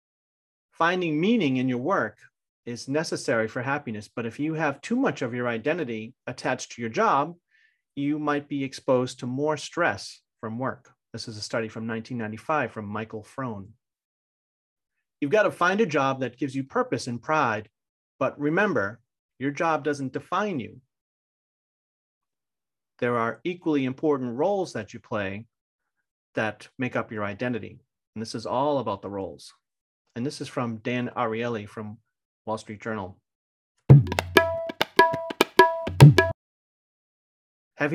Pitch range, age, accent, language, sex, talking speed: 110-150 Hz, 40-59, American, English, male, 140 wpm